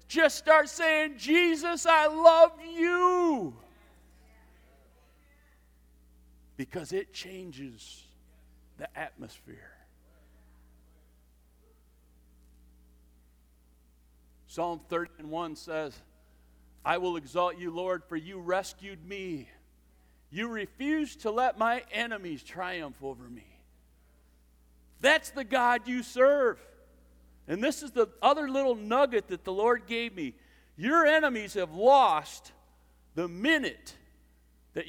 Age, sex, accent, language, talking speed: 50-69, male, American, English, 100 wpm